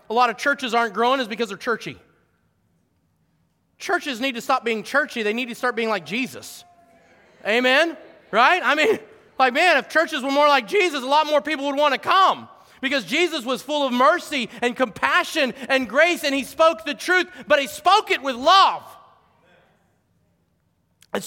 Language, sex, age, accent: English, male, 30-49, American